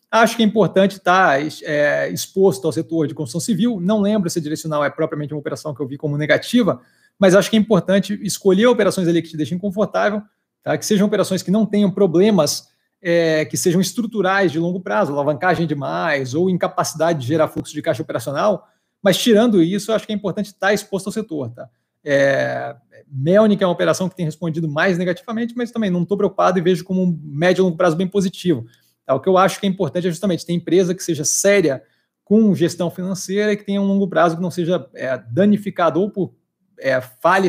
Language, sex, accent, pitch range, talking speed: Portuguese, male, Brazilian, 155-195 Hz, 205 wpm